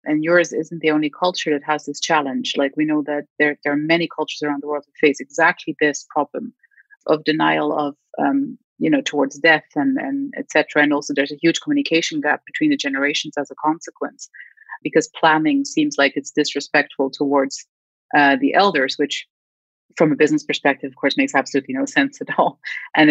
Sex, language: female, English